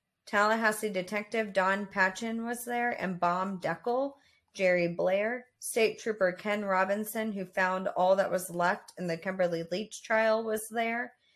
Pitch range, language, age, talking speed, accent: 185-215 Hz, English, 30-49, 150 wpm, American